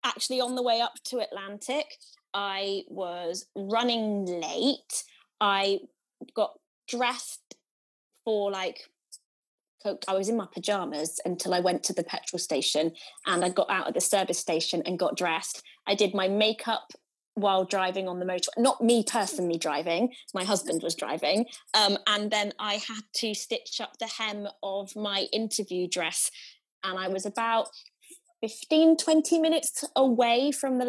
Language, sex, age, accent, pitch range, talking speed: English, female, 20-39, British, 195-260 Hz, 155 wpm